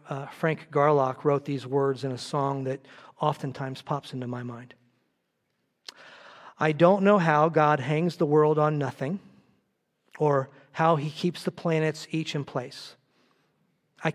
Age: 40-59